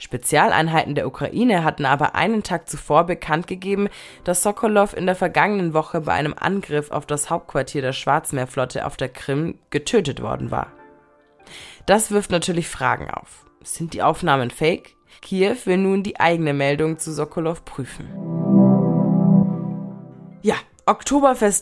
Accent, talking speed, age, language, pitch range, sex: German, 135 wpm, 20-39, German, 150-190 Hz, female